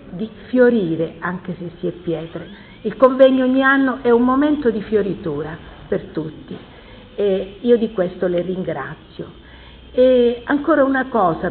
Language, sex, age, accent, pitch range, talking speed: Italian, female, 50-69, native, 180-235 Hz, 145 wpm